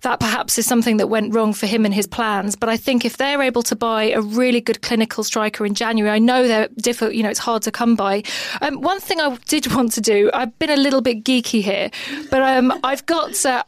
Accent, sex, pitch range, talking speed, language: British, female, 225-270 Hz, 255 wpm, English